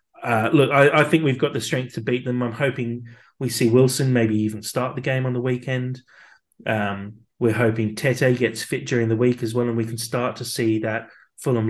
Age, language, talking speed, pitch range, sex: 20-39, English, 225 wpm, 110-130 Hz, male